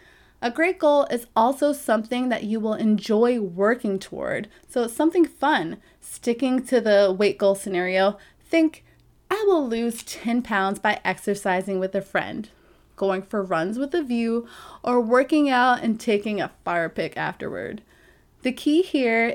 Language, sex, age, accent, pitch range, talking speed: English, female, 20-39, American, 200-265 Hz, 160 wpm